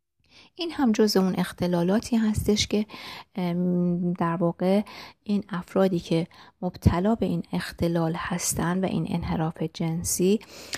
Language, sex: Persian, female